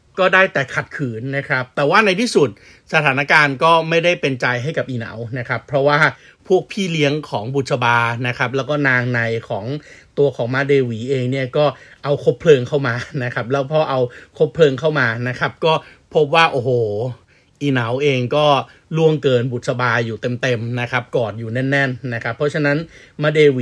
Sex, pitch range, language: male, 125-155 Hz, Thai